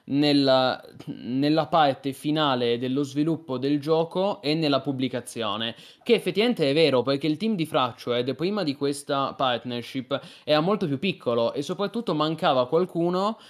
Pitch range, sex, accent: 130-165 Hz, male, native